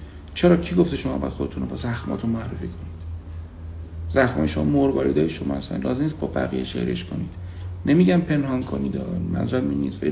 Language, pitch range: Persian, 90-140 Hz